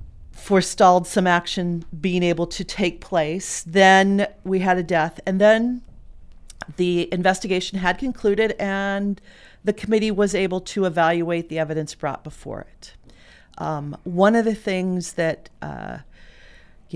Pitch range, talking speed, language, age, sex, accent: 160-195 Hz, 135 wpm, English, 40-59, female, American